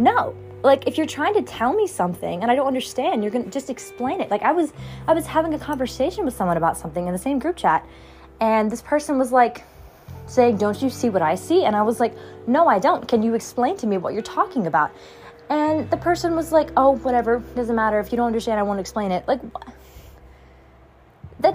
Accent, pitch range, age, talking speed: American, 195-285 Hz, 20-39, 230 wpm